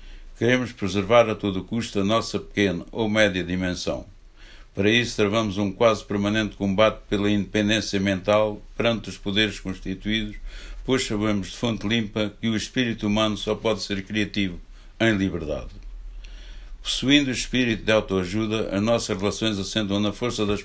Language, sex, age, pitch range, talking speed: Portuguese, male, 60-79, 95-110 Hz, 150 wpm